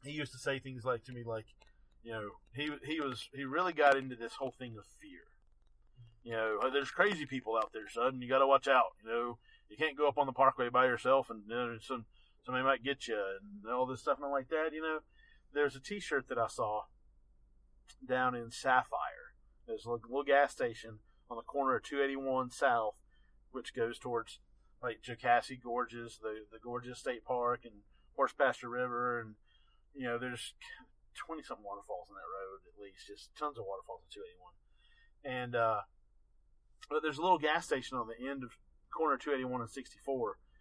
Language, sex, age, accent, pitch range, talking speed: English, male, 40-59, American, 115-140 Hz, 200 wpm